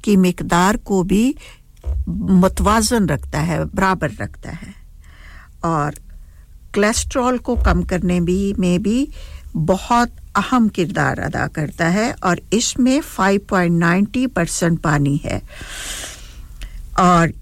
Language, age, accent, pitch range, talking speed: English, 60-79, Indian, 170-205 Hz, 105 wpm